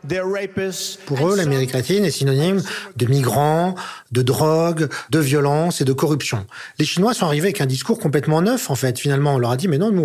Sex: male